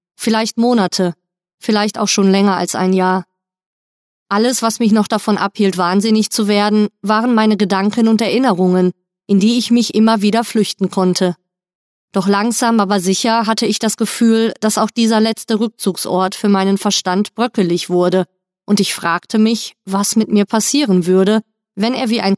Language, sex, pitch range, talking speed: German, female, 185-220 Hz, 165 wpm